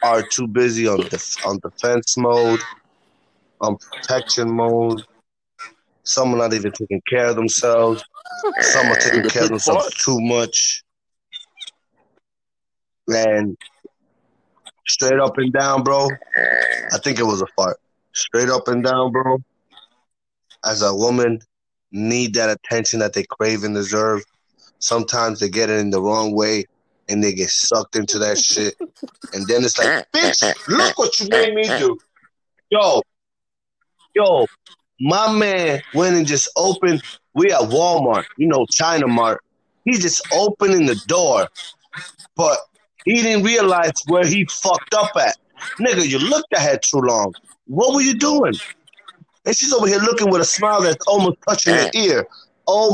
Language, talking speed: English, 150 wpm